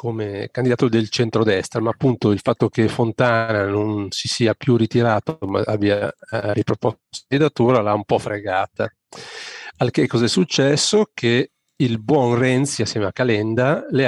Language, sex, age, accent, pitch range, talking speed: Italian, male, 40-59, native, 110-130 Hz, 160 wpm